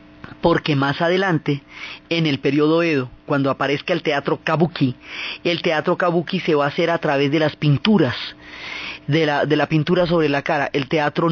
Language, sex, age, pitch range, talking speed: Spanish, female, 30-49, 140-170 Hz, 175 wpm